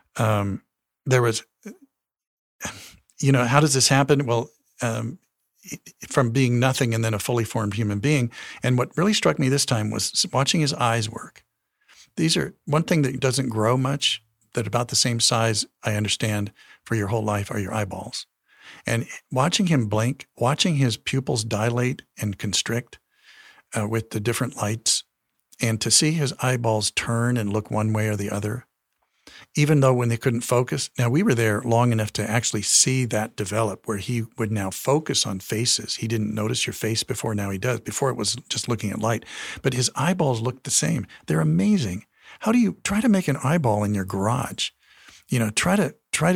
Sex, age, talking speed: male, 50-69, 190 wpm